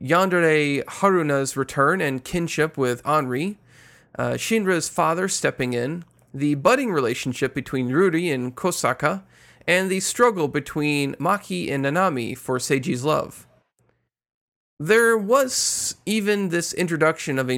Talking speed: 125 wpm